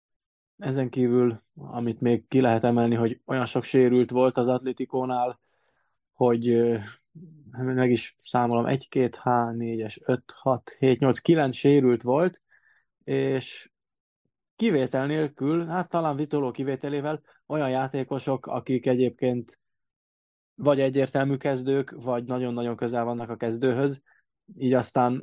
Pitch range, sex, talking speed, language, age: 115-135 Hz, male, 105 wpm, Hungarian, 20-39